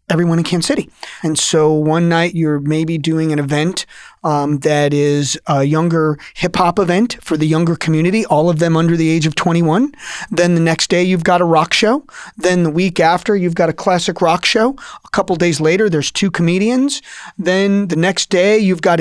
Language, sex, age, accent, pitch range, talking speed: English, male, 30-49, American, 165-205 Hz, 200 wpm